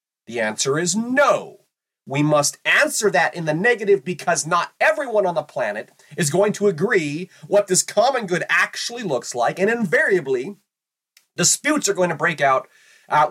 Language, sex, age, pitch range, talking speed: English, male, 30-49, 150-250 Hz, 165 wpm